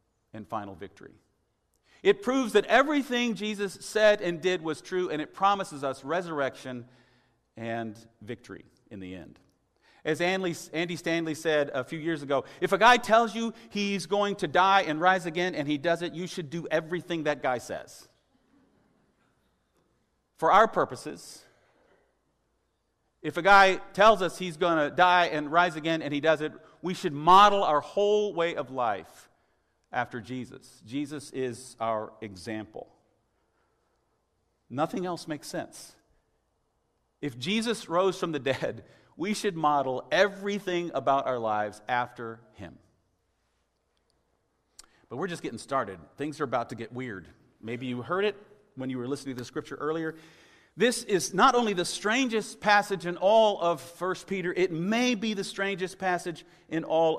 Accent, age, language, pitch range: American, 40-59, English, 130-190 Hz